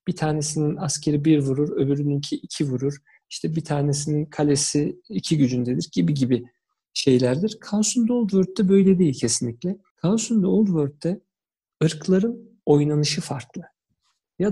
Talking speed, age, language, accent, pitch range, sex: 130 wpm, 50-69, Turkish, native, 140-195 Hz, male